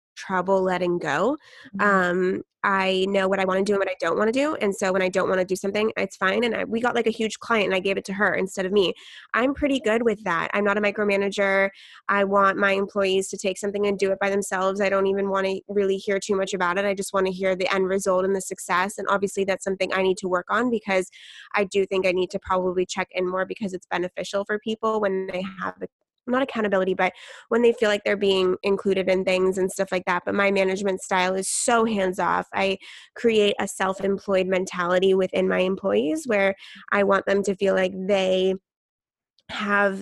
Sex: female